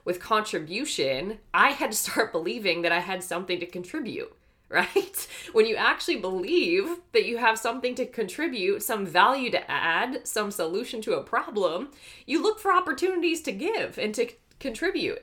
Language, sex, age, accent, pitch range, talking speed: English, female, 20-39, American, 170-255 Hz, 165 wpm